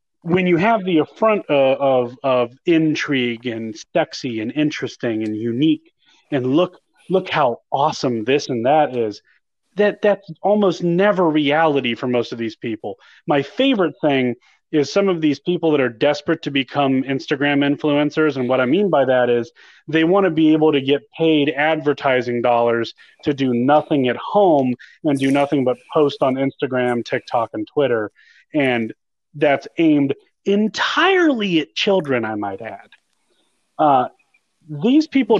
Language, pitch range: English, 135-185 Hz